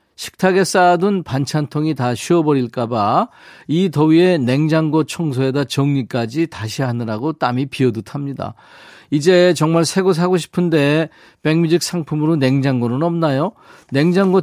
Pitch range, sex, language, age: 125-175 Hz, male, Korean, 40-59